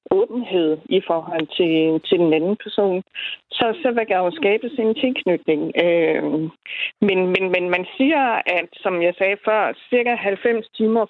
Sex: female